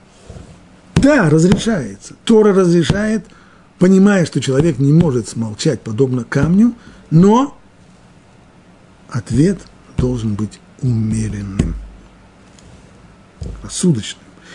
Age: 50-69